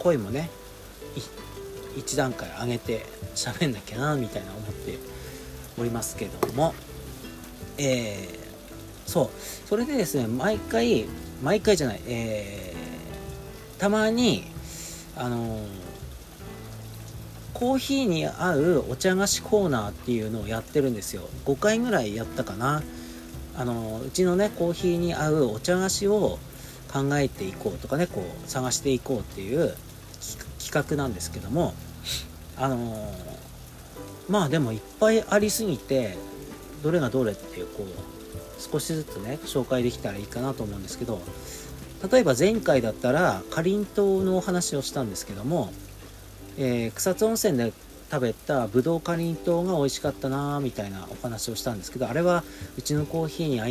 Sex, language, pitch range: male, Japanese, 105-160 Hz